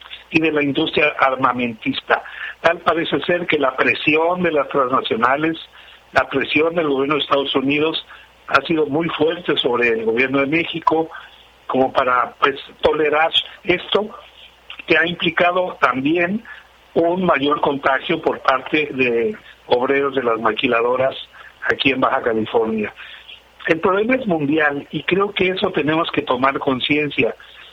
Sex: male